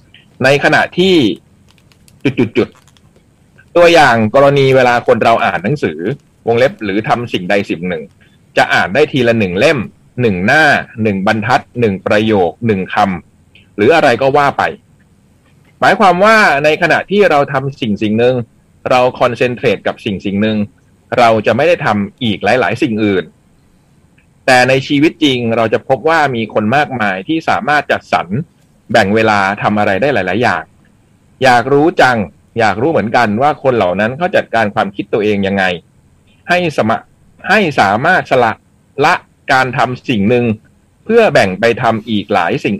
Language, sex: Thai, male